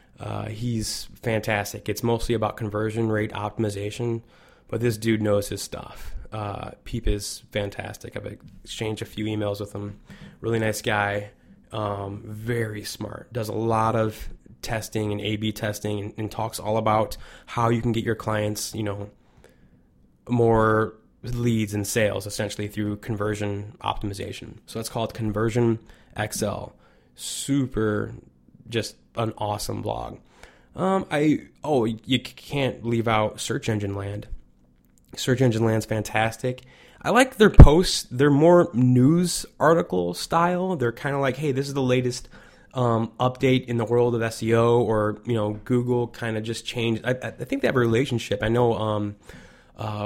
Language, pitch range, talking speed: English, 105-120 Hz, 155 wpm